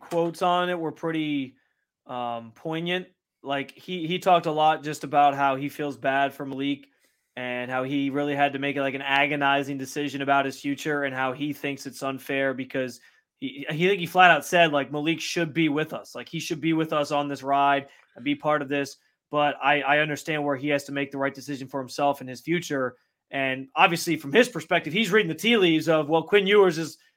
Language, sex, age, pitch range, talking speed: English, male, 20-39, 145-180 Hz, 225 wpm